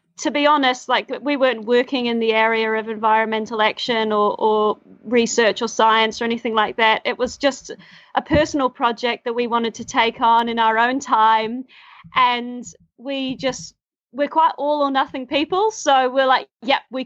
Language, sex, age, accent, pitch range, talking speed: English, female, 30-49, Australian, 230-270 Hz, 185 wpm